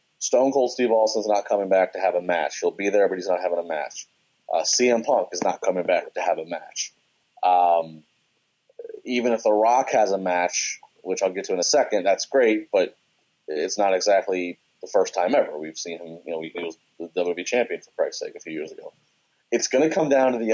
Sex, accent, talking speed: male, American, 235 wpm